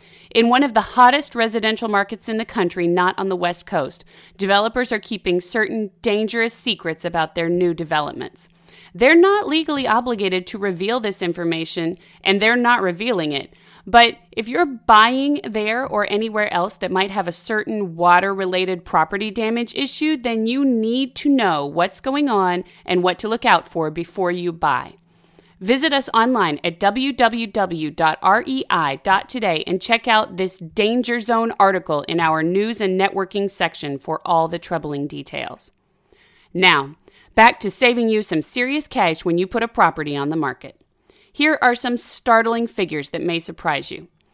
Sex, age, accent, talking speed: female, 30-49, American, 160 wpm